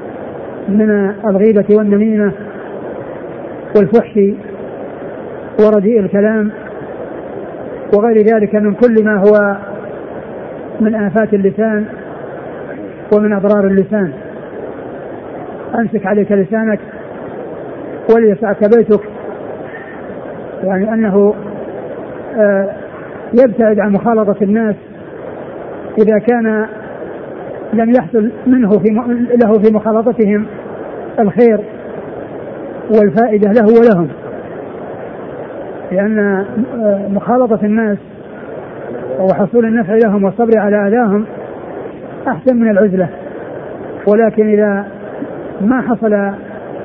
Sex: male